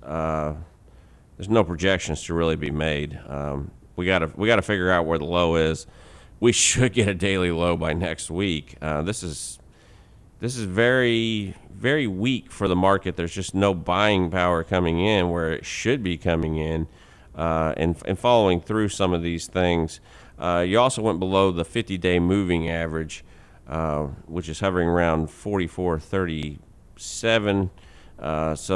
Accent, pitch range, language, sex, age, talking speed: American, 80-95 Hz, English, male, 40-59, 165 wpm